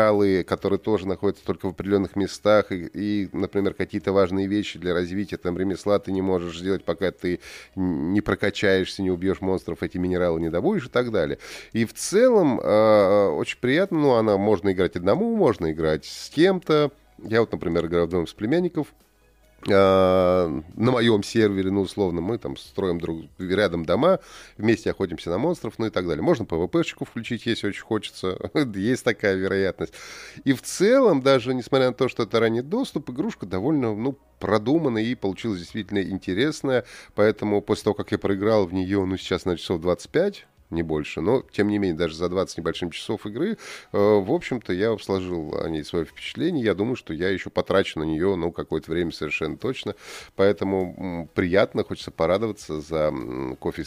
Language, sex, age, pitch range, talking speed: Russian, male, 30-49, 90-110 Hz, 180 wpm